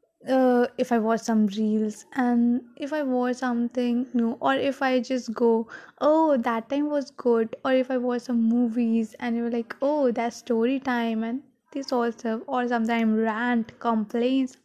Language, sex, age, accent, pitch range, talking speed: Hindi, female, 20-39, native, 235-280 Hz, 170 wpm